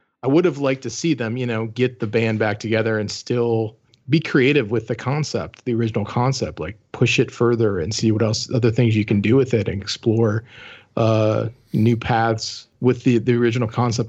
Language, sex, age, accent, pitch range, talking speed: English, male, 40-59, American, 110-125 Hz, 210 wpm